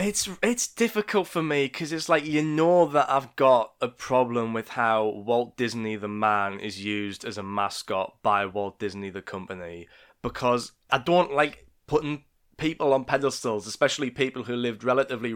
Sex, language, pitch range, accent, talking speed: male, English, 105-125 Hz, British, 170 wpm